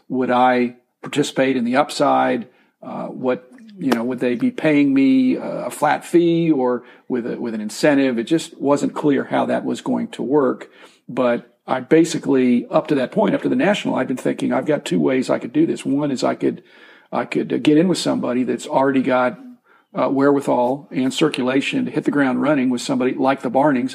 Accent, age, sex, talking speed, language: American, 50-69, male, 210 wpm, English